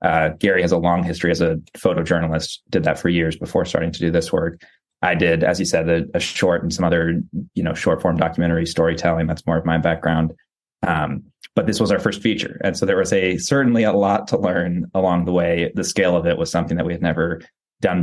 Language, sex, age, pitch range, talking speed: English, male, 20-39, 85-95 Hz, 240 wpm